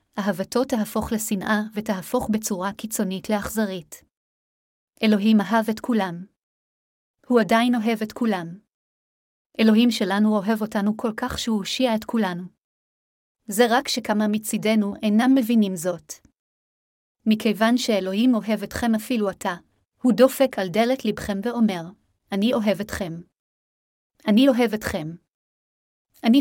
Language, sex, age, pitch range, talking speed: Hebrew, female, 30-49, 200-240 Hz, 120 wpm